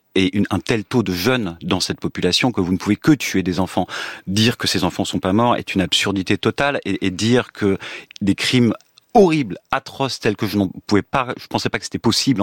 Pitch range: 100-130 Hz